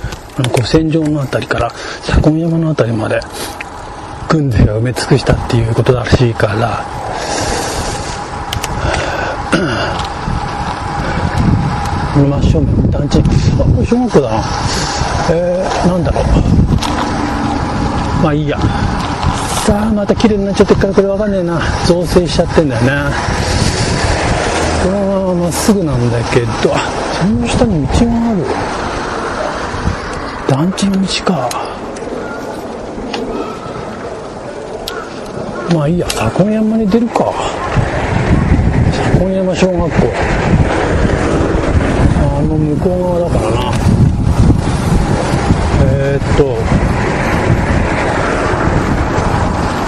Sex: male